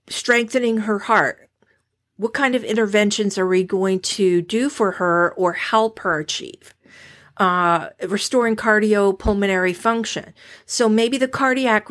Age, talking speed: 50-69, 130 wpm